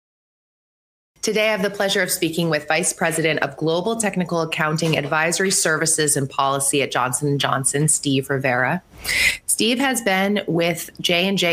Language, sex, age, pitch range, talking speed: English, female, 20-39, 145-190 Hz, 145 wpm